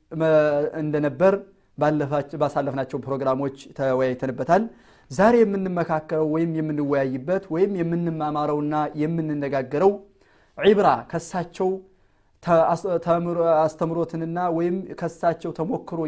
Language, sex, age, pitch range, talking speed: Amharic, male, 30-49, 150-185 Hz, 90 wpm